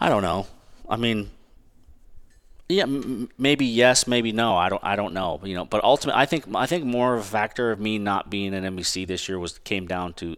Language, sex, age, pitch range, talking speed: English, male, 30-49, 90-105 Hz, 230 wpm